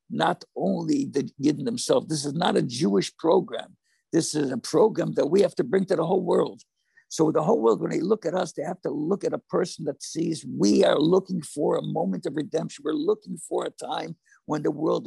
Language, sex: English, male